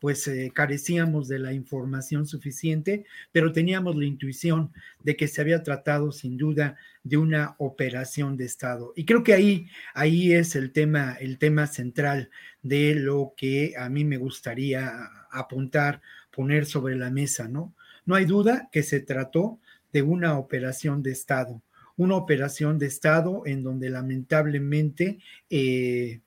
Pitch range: 135-160 Hz